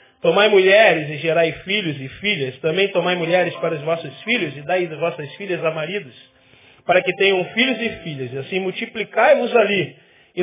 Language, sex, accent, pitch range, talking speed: Portuguese, male, Brazilian, 150-200 Hz, 180 wpm